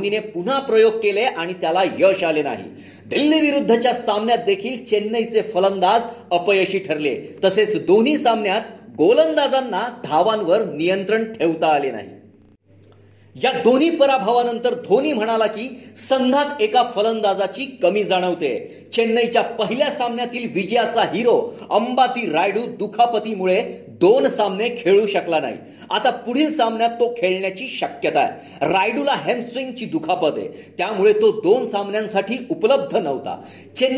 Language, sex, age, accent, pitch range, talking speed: Marathi, male, 40-59, native, 195-255 Hz, 55 wpm